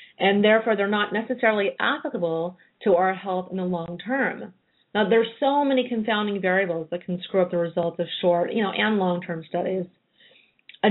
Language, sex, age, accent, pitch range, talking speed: English, female, 30-49, American, 175-210 Hz, 180 wpm